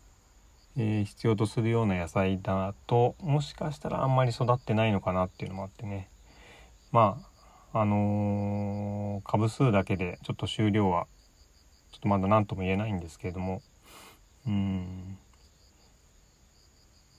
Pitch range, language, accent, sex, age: 90-115 Hz, Japanese, native, male, 30-49